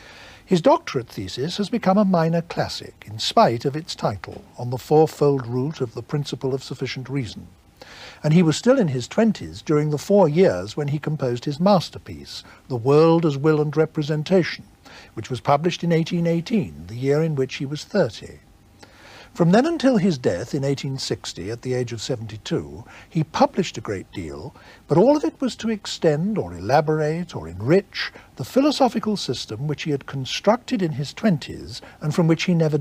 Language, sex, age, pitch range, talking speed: English, male, 60-79, 125-175 Hz, 185 wpm